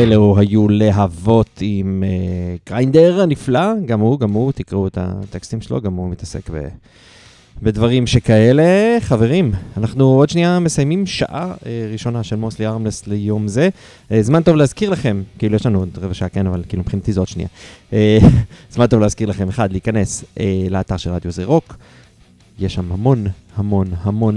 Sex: male